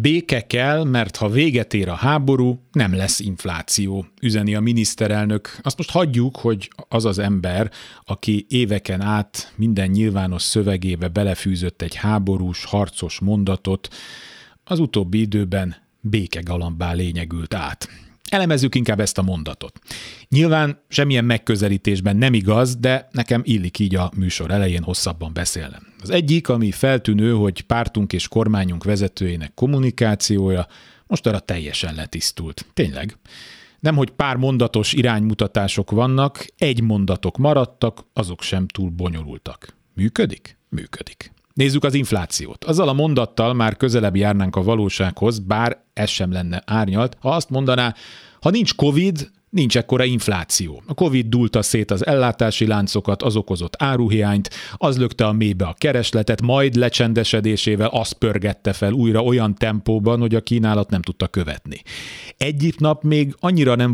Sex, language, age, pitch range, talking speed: male, Hungarian, 40-59, 95-125 Hz, 135 wpm